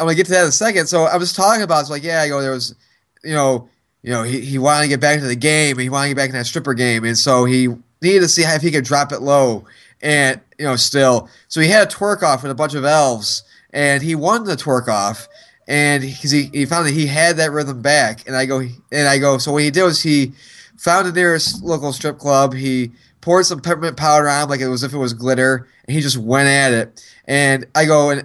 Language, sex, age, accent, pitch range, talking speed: English, male, 20-39, American, 130-165 Hz, 275 wpm